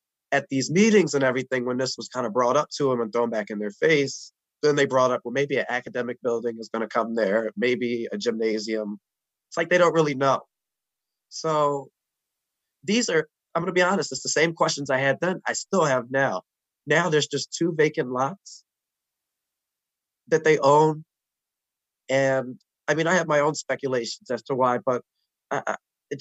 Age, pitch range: 20-39, 120-150 Hz